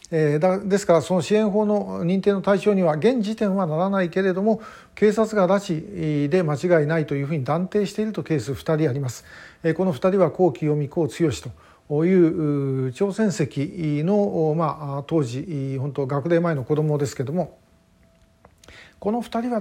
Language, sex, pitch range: Japanese, male, 140-175 Hz